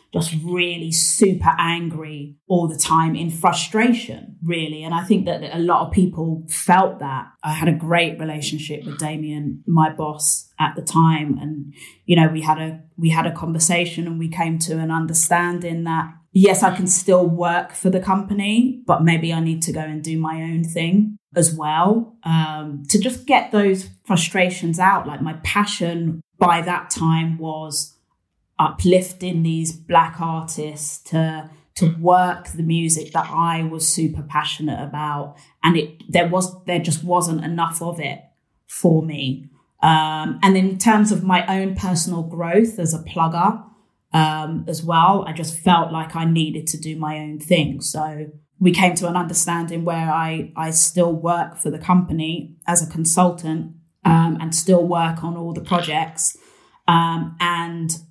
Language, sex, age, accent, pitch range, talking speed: English, female, 20-39, British, 160-175 Hz, 170 wpm